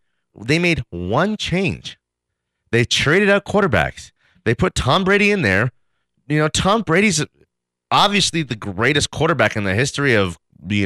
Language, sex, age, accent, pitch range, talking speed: English, male, 30-49, American, 100-155 Hz, 150 wpm